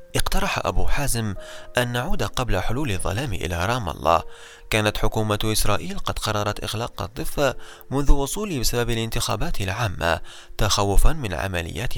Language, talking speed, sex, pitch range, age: Arabic, 130 wpm, male, 95-120 Hz, 20-39